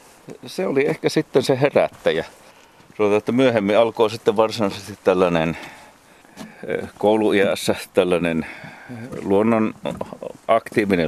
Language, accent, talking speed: Finnish, native, 75 wpm